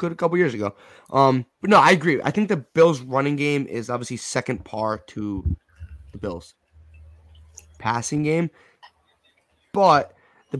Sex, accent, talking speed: male, American, 155 wpm